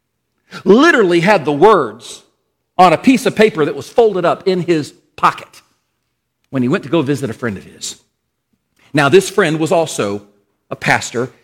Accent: American